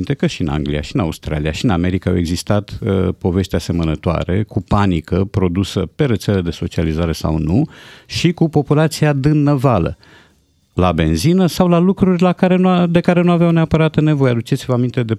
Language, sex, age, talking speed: Romanian, male, 50-69, 180 wpm